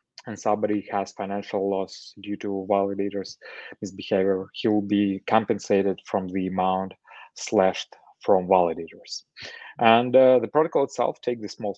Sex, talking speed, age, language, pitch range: male, 140 wpm, 20-39, English, 100-120 Hz